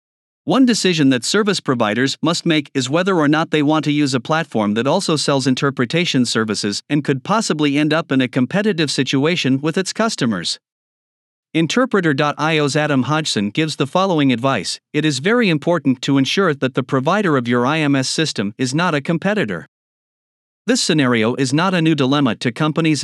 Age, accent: 50-69, American